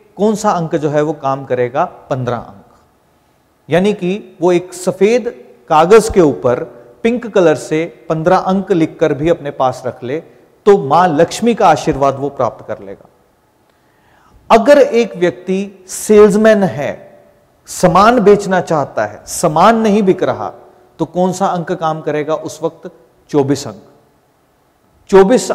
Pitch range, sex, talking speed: 145-200 Hz, male, 145 wpm